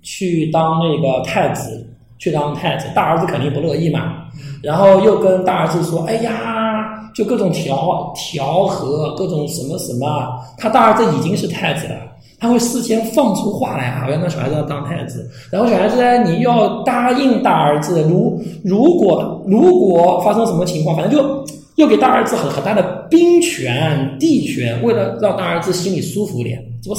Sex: male